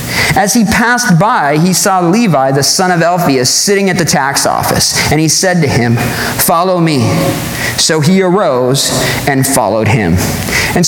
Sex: male